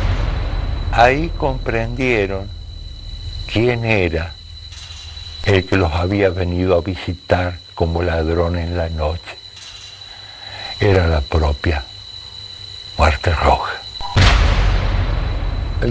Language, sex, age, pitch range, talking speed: Spanish, male, 50-69, 90-100 Hz, 80 wpm